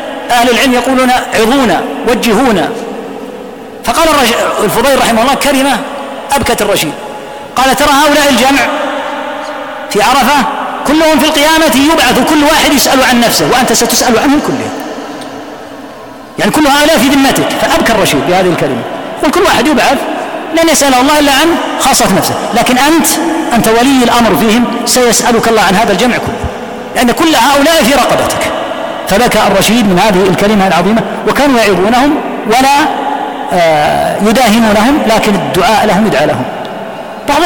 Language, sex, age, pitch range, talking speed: Arabic, female, 40-59, 230-285 Hz, 135 wpm